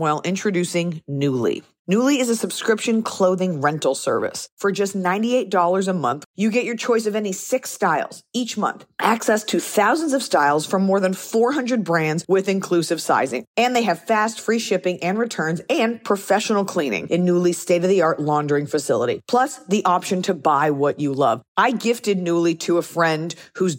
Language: English